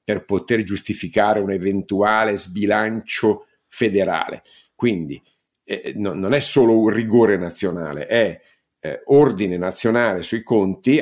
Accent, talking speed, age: native, 115 wpm, 50-69